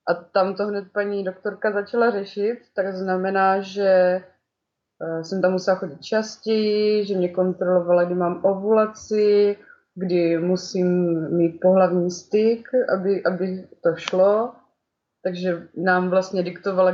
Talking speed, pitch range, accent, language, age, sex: 125 wpm, 180-210 Hz, native, Czech, 20-39, female